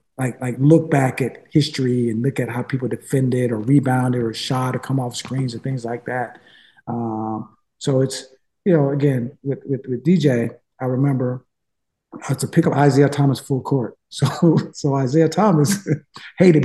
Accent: American